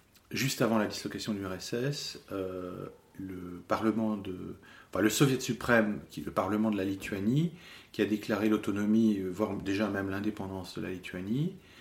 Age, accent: 40-59, French